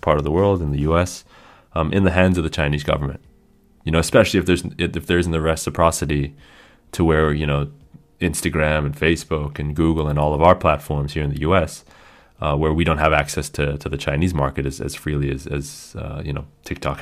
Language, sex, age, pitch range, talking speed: English, male, 20-39, 75-90 Hz, 220 wpm